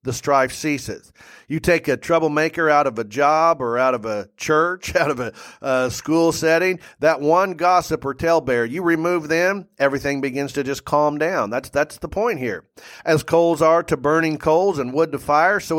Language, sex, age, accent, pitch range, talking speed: English, male, 40-59, American, 140-165 Hz, 200 wpm